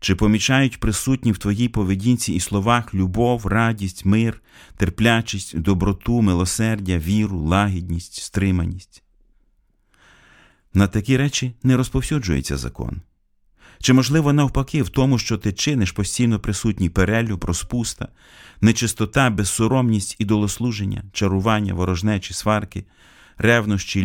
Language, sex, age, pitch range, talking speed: Ukrainian, male, 30-49, 90-110 Hz, 105 wpm